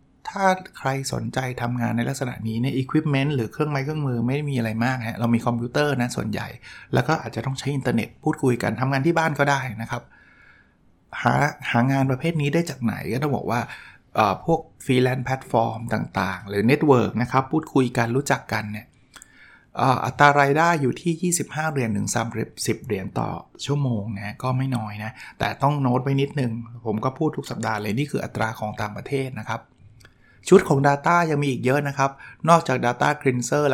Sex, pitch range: male, 115-145 Hz